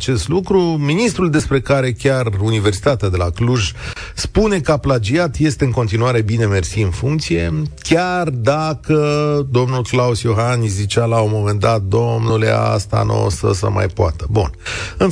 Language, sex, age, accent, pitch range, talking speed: Romanian, male, 40-59, native, 110-170 Hz, 165 wpm